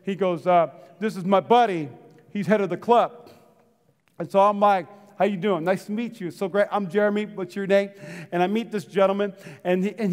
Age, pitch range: 40-59, 185-240 Hz